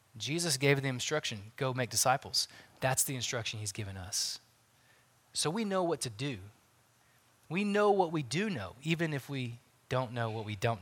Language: English